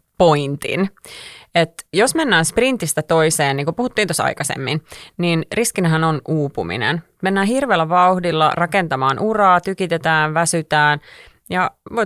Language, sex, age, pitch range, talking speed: Finnish, female, 30-49, 150-195 Hz, 120 wpm